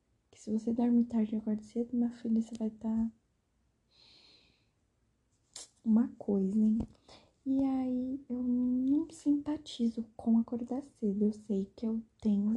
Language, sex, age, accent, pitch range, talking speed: Portuguese, female, 10-29, Brazilian, 220-265 Hz, 140 wpm